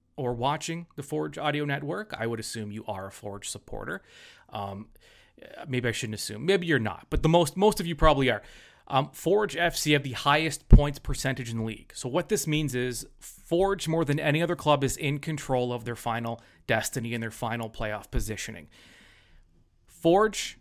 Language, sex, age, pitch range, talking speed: English, male, 30-49, 115-155 Hz, 190 wpm